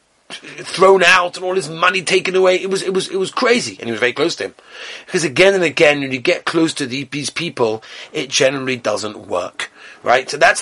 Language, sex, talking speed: English, male, 230 wpm